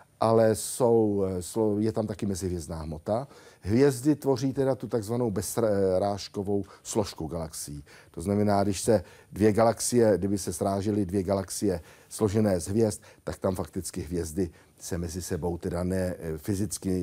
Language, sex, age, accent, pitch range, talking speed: Czech, male, 60-79, native, 100-125 Hz, 135 wpm